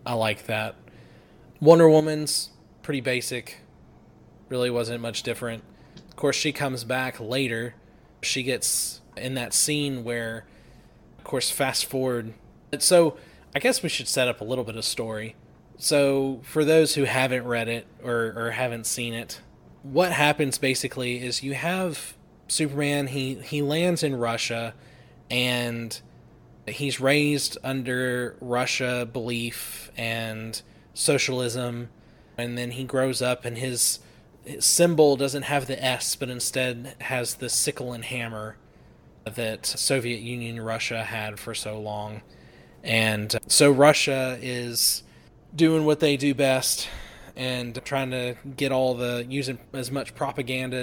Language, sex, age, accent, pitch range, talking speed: English, male, 20-39, American, 115-140 Hz, 140 wpm